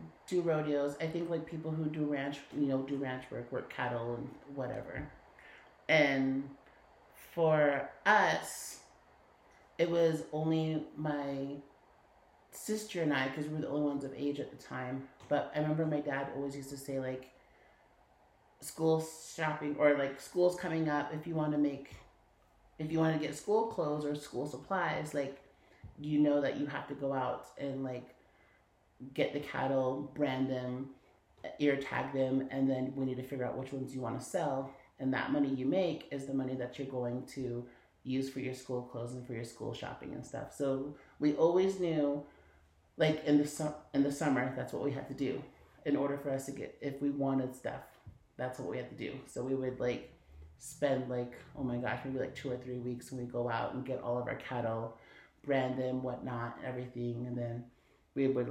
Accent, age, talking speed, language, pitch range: American, 30-49, 200 wpm, English, 130-150 Hz